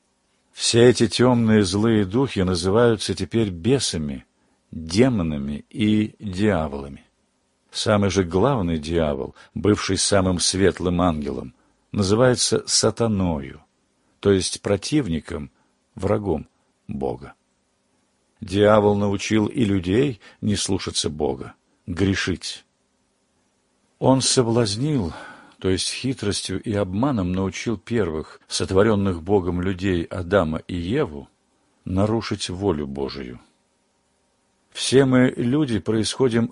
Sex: male